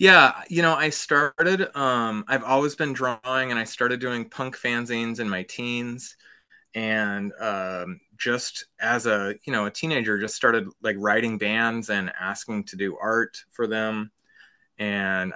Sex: male